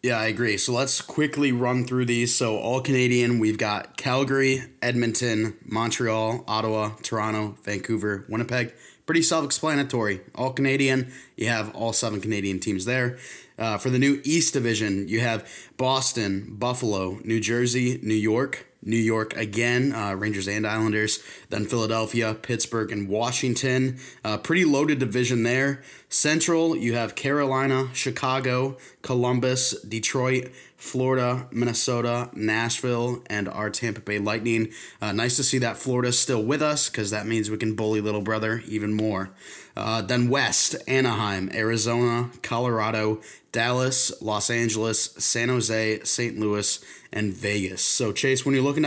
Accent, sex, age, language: American, male, 20-39, English